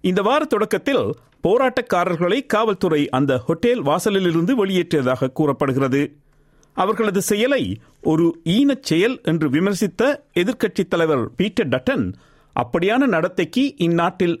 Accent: native